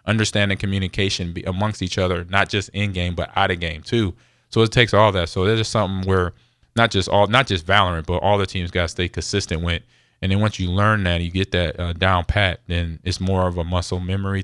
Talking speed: 240 wpm